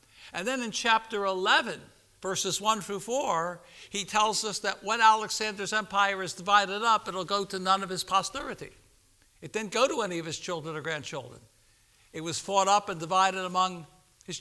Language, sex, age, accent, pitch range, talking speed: English, male, 60-79, American, 165-215 Hz, 185 wpm